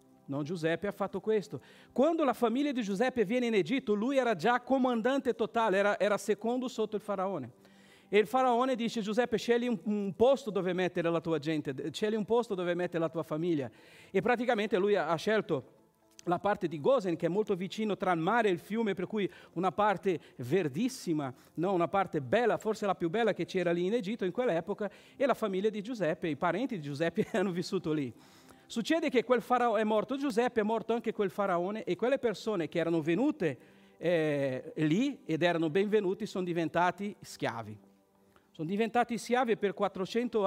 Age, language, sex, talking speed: 50-69, Italian, male, 190 wpm